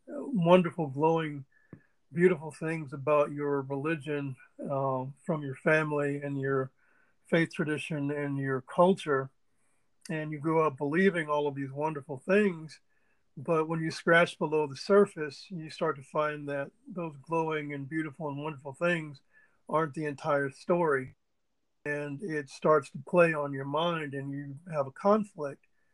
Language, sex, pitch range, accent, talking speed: English, male, 140-165 Hz, American, 150 wpm